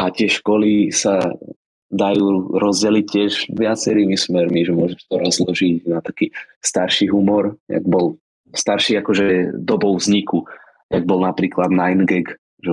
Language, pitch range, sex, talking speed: Slovak, 90-100 Hz, male, 135 wpm